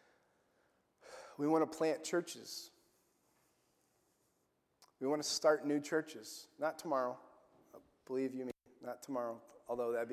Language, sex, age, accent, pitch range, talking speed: English, male, 30-49, American, 125-160 Hz, 125 wpm